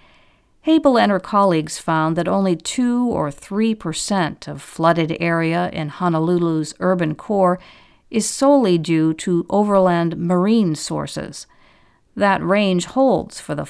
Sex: female